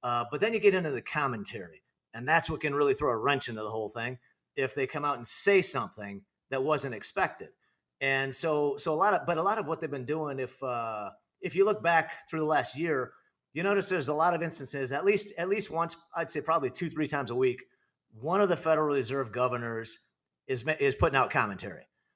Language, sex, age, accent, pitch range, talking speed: English, male, 40-59, American, 130-165 Hz, 230 wpm